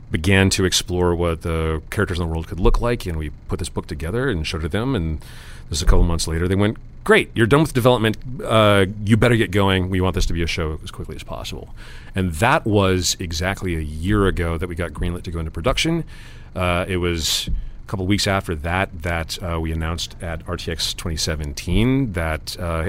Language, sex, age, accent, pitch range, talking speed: English, male, 40-59, American, 85-110 Hz, 230 wpm